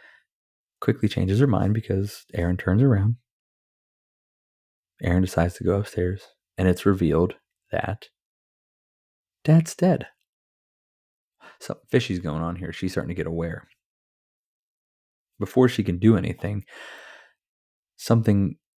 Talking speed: 110 wpm